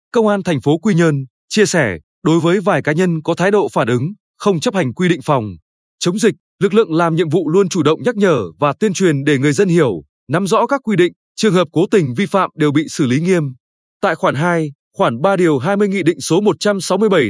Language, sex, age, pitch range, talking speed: Vietnamese, male, 20-39, 155-200 Hz, 245 wpm